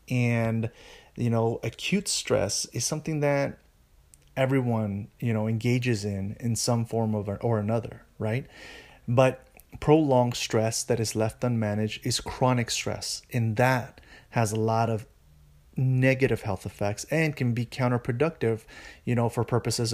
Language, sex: English, male